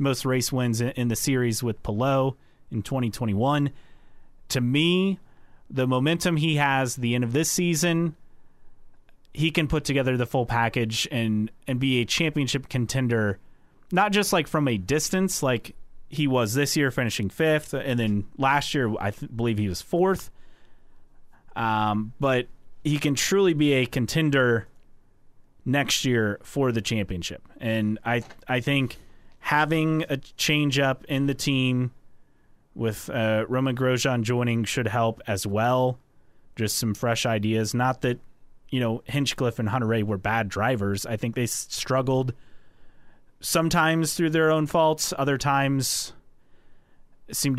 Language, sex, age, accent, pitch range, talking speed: English, male, 30-49, American, 115-140 Hz, 145 wpm